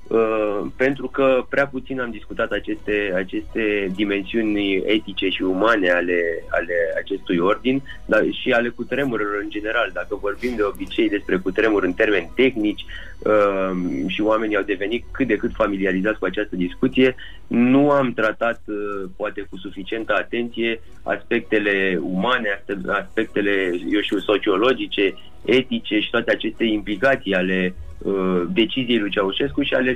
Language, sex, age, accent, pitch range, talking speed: Romanian, male, 30-49, native, 100-125 Hz, 140 wpm